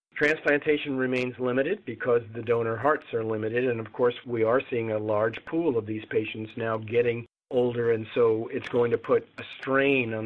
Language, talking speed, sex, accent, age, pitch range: English, 195 wpm, male, American, 50-69, 115-135 Hz